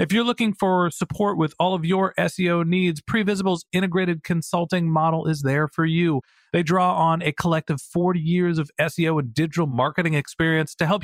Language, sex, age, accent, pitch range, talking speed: English, male, 40-59, American, 155-195 Hz, 185 wpm